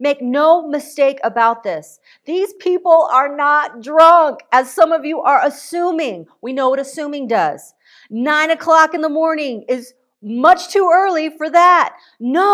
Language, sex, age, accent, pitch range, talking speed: English, female, 40-59, American, 230-290 Hz, 160 wpm